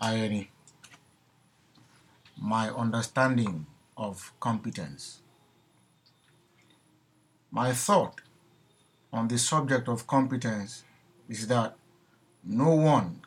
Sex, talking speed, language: male, 70 wpm, English